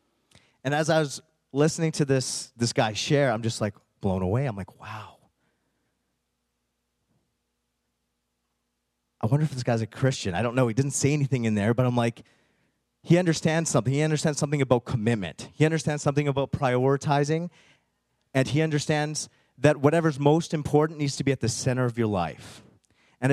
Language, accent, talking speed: English, American, 170 wpm